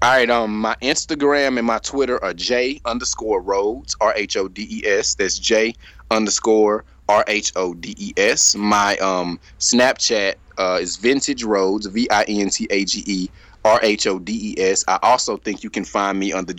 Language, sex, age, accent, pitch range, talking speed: English, male, 20-39, American, 100-120 Hz, 140 wpm